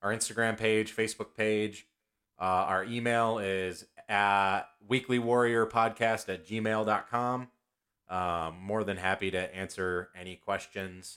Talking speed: 120 wpm